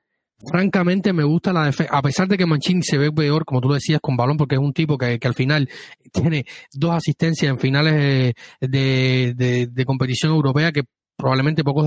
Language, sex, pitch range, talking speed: Spanish, male, 130-150 Hz, 200 wpm